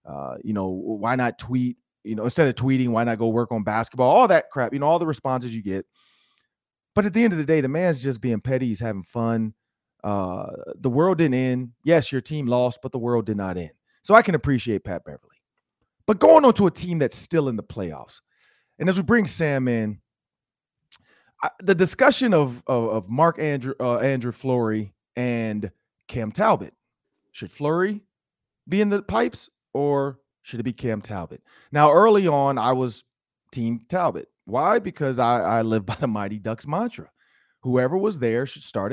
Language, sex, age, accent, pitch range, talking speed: English, male, 30-49, American, 115-145 Hz, 195 wpm